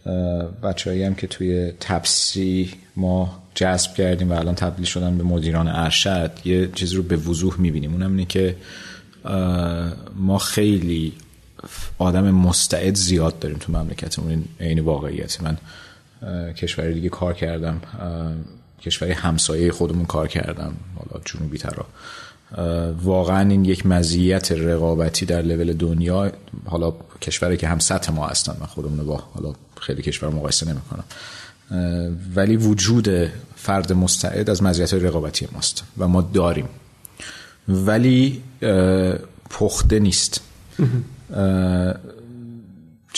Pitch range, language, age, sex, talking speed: 85-95 Hz, Persian, 30-49, male, 115 wpm